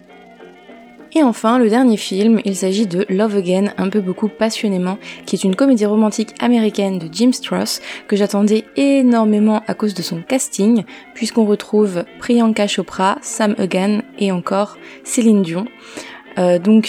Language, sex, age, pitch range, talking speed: French, female, 20-39, 190-225 Hz, 155 wpm